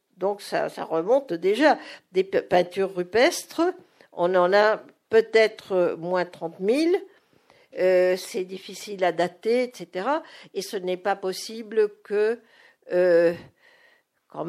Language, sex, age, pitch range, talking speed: French, female, 50-69, 185-310 Hz, 120 wpm